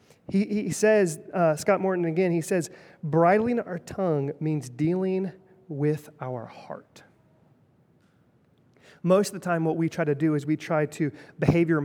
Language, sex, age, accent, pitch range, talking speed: English, male, 30-49, American, 145-180 Hz, 155 wpm